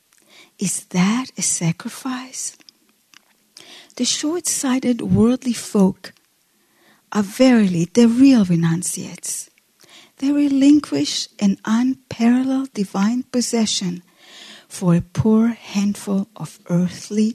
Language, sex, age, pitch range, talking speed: English, female, 40-59, 180-245 Hz, 85 wpm